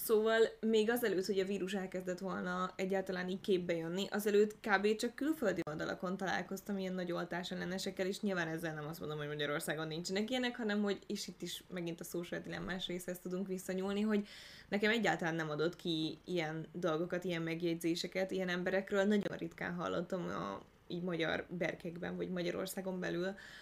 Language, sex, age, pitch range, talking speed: Hungarian, female, 10-29, 175-195 Hz, 170 wpm